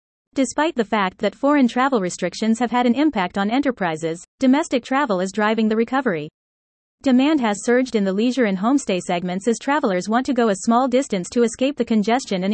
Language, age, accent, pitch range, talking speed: English, 30-49, American, 205-255 Hz, 195 wpm